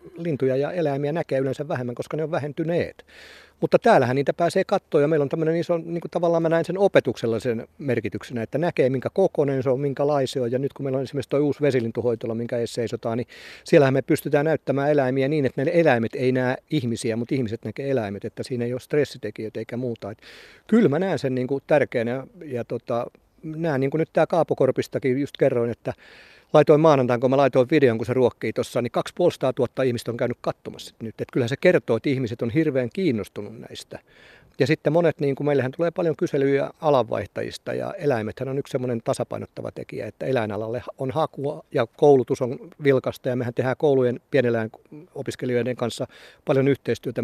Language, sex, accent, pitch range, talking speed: Finnish, male, native, 120-150 Hz, 190 wpm